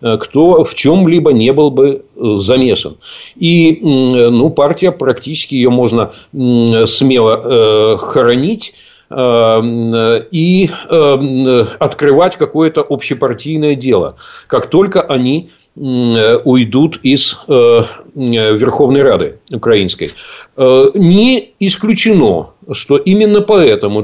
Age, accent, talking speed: 50-69, native, 95 wpm